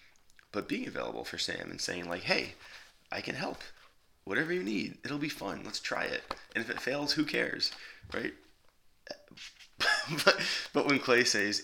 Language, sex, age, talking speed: English, male, 20-39, 170 wpm